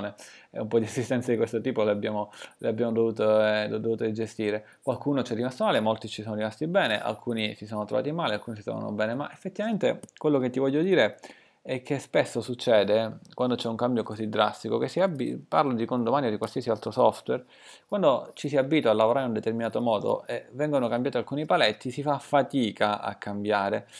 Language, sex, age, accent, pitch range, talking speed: Italian, male, 20-39, native, 110-150 Hz, 205 wpm